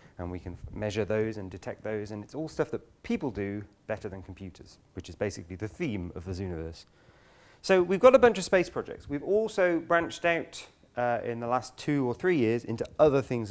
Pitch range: 105-140 Hz